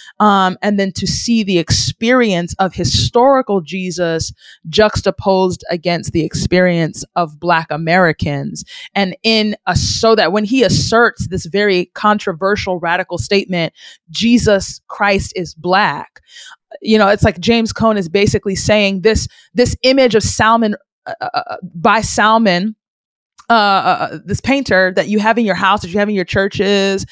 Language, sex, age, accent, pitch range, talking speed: English, female, 30-49, American, 180-215 Hz, 145 wpm